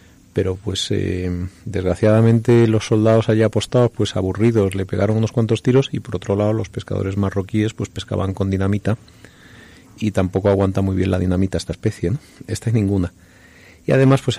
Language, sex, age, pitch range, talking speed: Spanish, male, 30-49, 95-115 Hz, 175 wpm